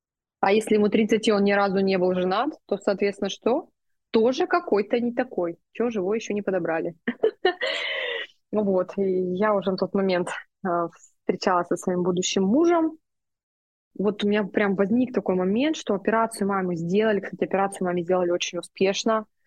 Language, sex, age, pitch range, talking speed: Russian, female, 20-39, 175-210 Hz, 155 wpm